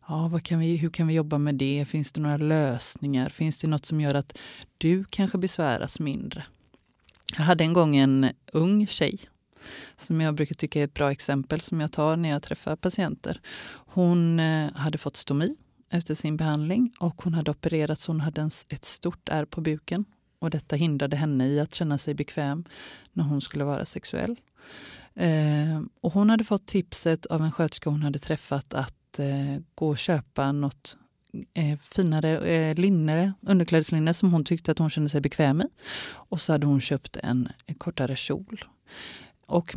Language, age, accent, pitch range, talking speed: Swedish, 30-49, native, 145-170 Hz, 175 wpm